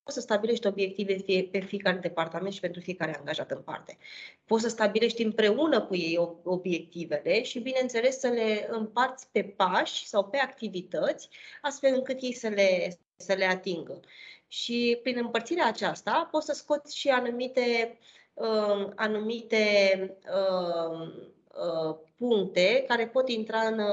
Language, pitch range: Romanian, 185-235 Hz